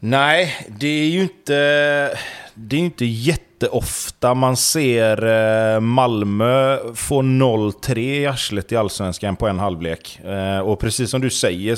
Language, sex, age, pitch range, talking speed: Swedish, male, 30-49, 105-140 Hz, 125 wpm